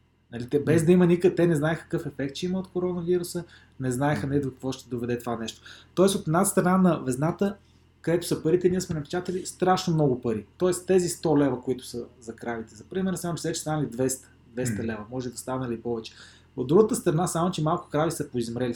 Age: 20-39